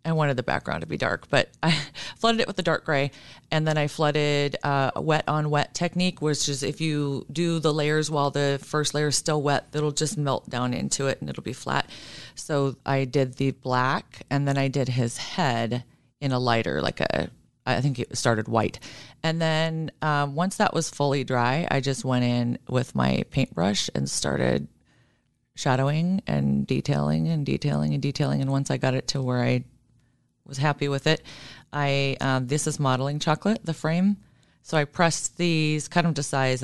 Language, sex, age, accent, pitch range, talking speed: English, female, 30-49, American, 125-155 Hz, 195 wpm